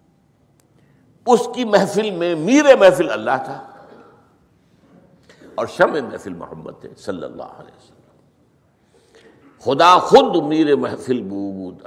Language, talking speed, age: Urdu, 105 wpm, 60-79